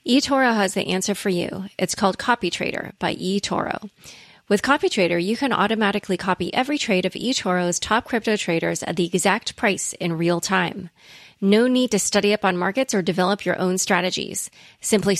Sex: female